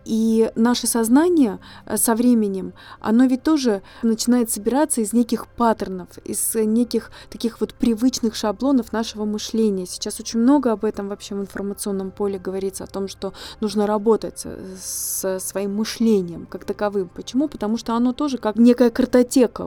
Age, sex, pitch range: 20-39, female, 205-235 Hz